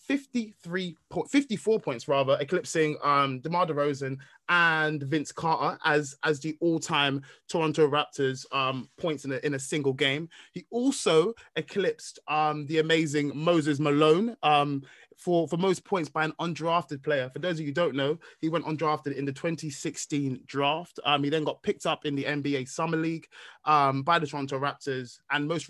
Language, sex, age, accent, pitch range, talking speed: English, male, 20-39, British, 135-165 Hz, 175 wpm